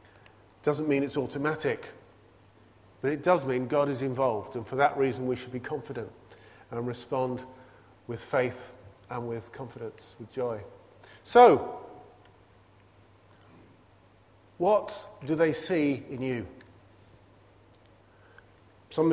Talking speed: 115 wpm